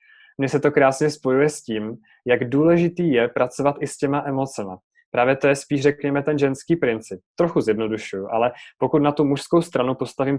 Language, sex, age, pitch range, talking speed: Czech, male, 20-39, 125-145 Hz, 185 wpm